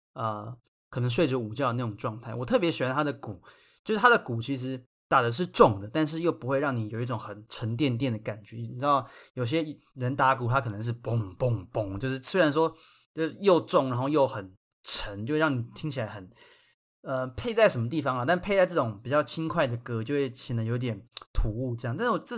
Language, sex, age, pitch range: Chinese, male, 20-39, 115-145 Hz